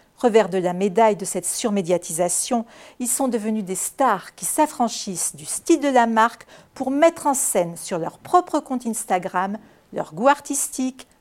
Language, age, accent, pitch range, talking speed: French, 50-69, French, 185-260 Hz, 165 wpm